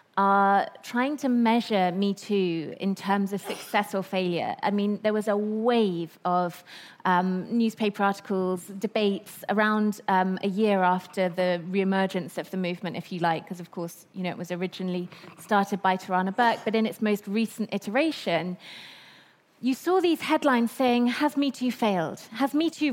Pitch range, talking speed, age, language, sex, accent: 195-245 Hz, 175 wpm, 20-39, English, female, British